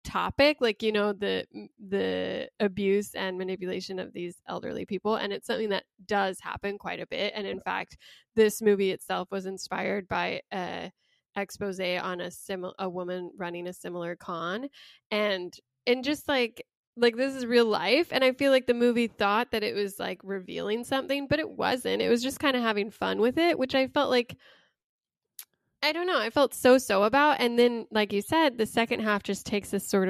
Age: 10-29